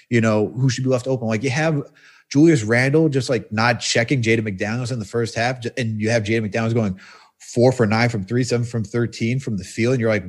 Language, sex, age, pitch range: English, male, 30-49, 115-155 Hz